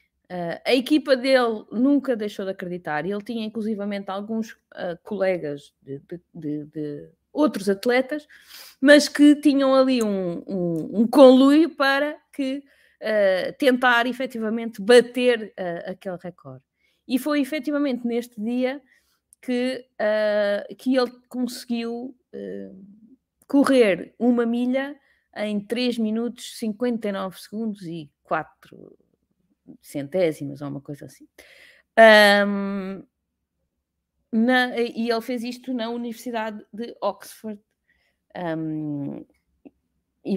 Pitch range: 190-260 Hz